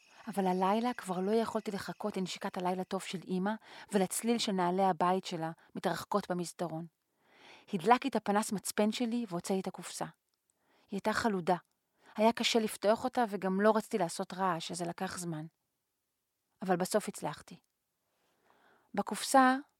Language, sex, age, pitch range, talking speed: Hebrew, female, 40-59, 185-220 Hz, 135 wpm